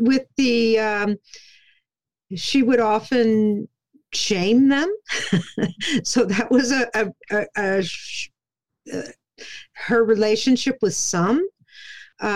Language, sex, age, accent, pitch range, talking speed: English, female, 50-69, American, 180-245 Hz, 90 wpm